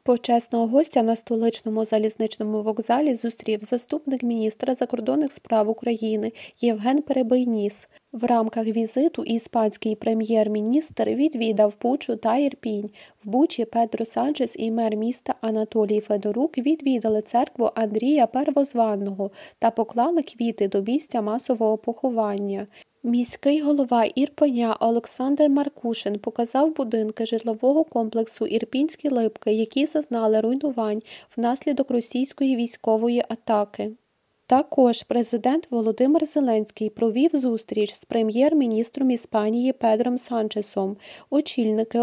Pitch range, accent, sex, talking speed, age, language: 220-260 Hz, native, female, 105 wpm, 20-39, Ukrainian